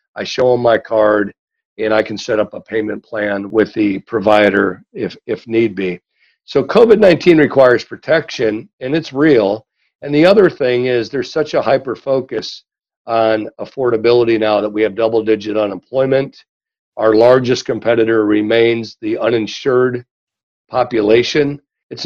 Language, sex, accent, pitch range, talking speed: English, male, American, 110-135 Hz, 140 wpm